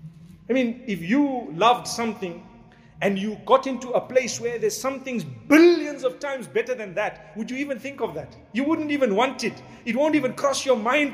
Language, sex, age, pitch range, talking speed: English, male, 50-69, 180-250 Hz, 205 wpm